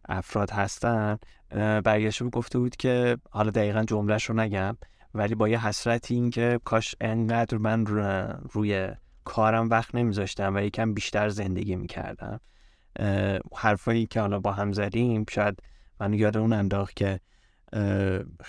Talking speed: 135 wpm